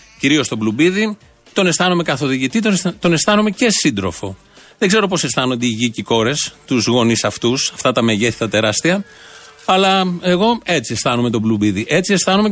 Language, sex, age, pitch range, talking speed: Greek, male, 30-49, 120-180 Hz, 160 wpm